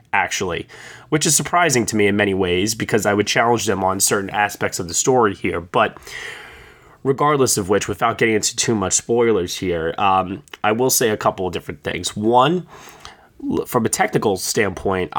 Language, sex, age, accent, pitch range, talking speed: English, male, 20-39, American, 100-125 Hz, 180 wpm